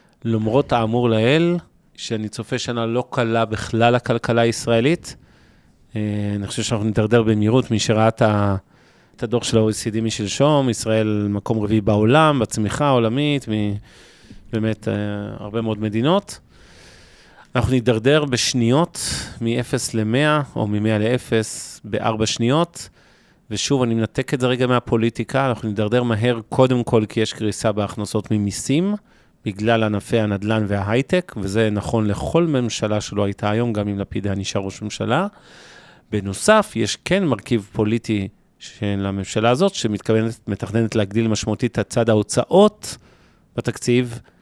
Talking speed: 130 wpm